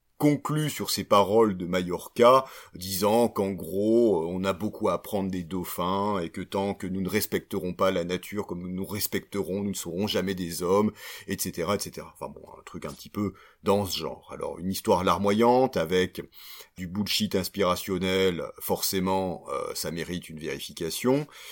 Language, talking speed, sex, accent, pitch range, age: French, 175 wpm, male, French, 95-125 Hz, 40-59